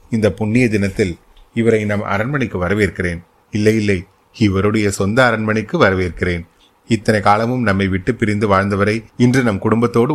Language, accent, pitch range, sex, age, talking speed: Tamil, native, 95-115 Hz, male, 30-49, 130 wpm